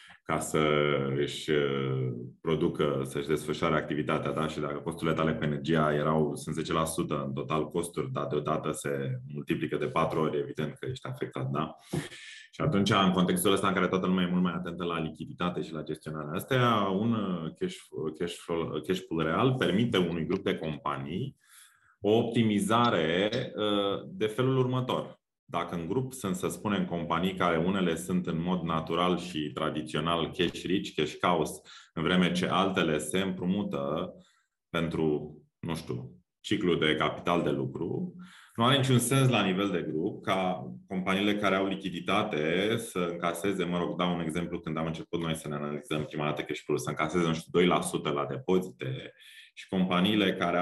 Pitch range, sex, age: 75-95 Hz, male, 20-39